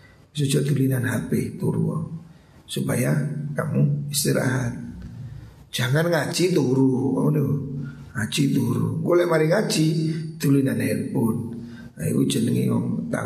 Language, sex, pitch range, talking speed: Indonesian, male, 130-170 Hz, 75 wpm